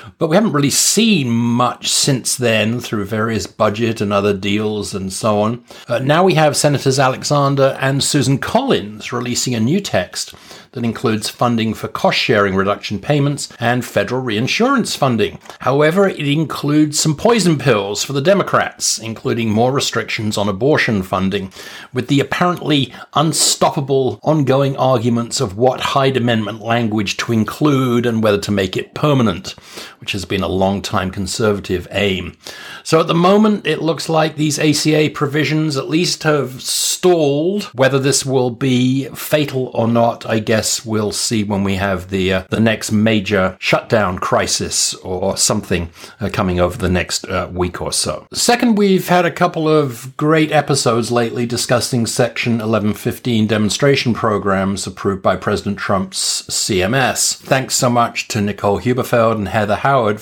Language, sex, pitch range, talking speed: English, male, 105-145 Hz, 155 wpm